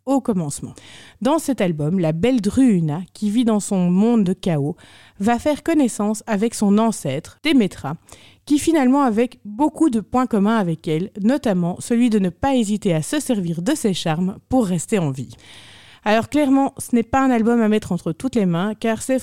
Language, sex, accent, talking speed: French, female, French, 195 wpm